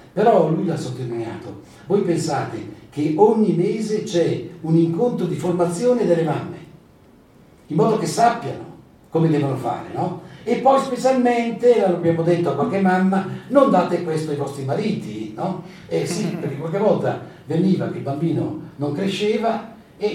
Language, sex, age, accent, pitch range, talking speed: Italian, male, 60-79, native, 130-180 Hz, 150 wpm